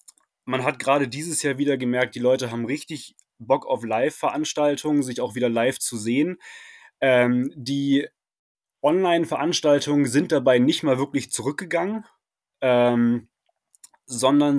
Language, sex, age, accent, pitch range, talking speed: English, male, 20-39, German, 130-155 Hz, 130 wpm